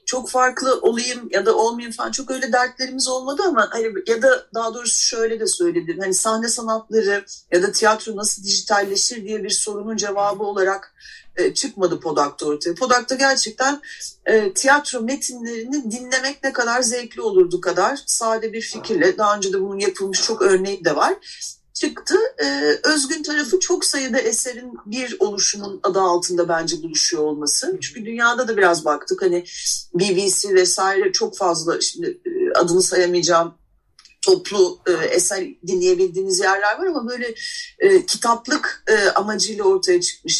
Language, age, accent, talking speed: Turkish, 40-59, native, 140 wpm